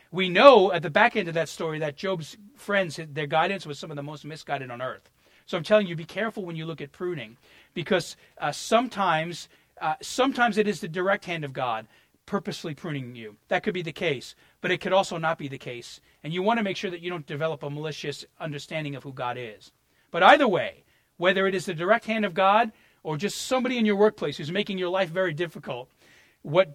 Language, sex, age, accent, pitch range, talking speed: English, male, 40-59, American, 145-200 Hz, 230 wpm